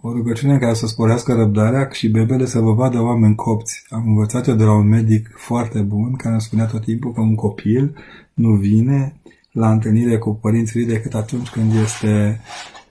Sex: male